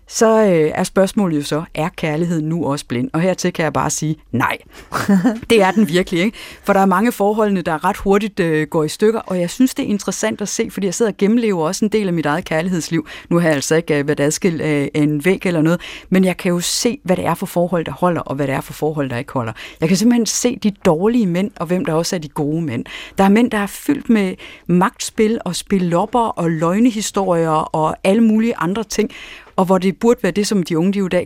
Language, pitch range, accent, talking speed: Danish, 160-210 Hz, native, 255 wpm